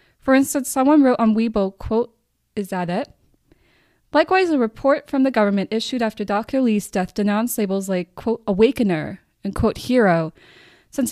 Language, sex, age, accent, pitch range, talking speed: English, female, 10-29, American, 185-240 Hz, 160 wpm